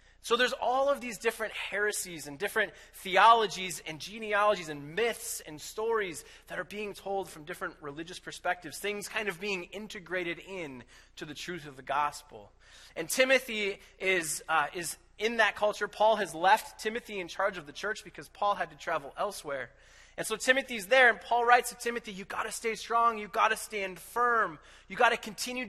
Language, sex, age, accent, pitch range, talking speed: English, male, 20-39, American, 150-215 Hz, 190 wpm